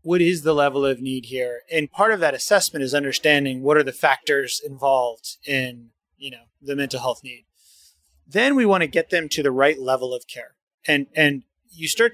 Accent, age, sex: American, 30-49, male